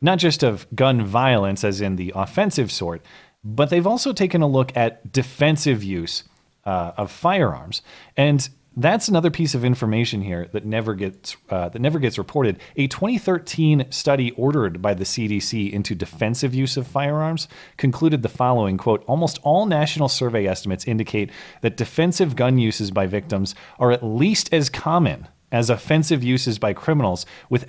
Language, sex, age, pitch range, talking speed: English, male, 30-49, 100-135 Hz, 165 wpm